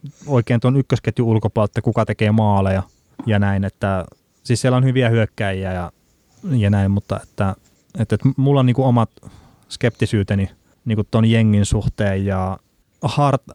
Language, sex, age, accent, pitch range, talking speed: Finnish, male, 30-49, native, 100-120 Hz, 155 wpm